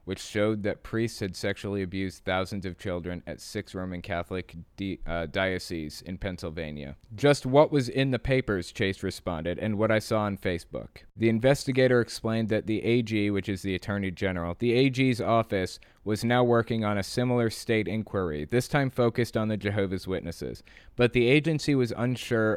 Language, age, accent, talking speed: English, 20-39, American, 175 wpm